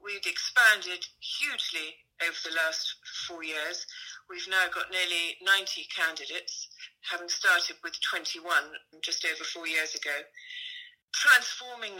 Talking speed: 120 wpm